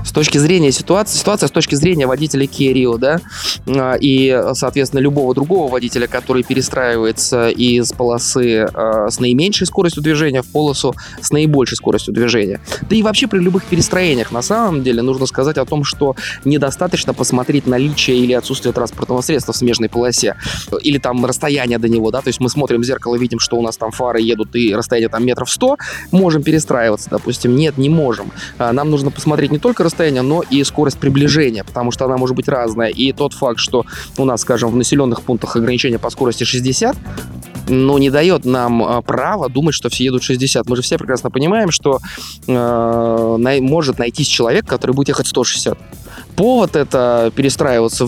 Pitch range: 120-145 Hz